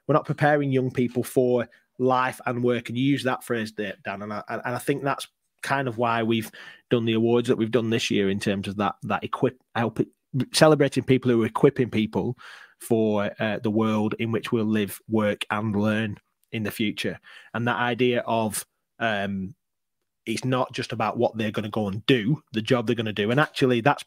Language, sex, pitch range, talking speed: English, male, 115-130 Hz, 215 wpm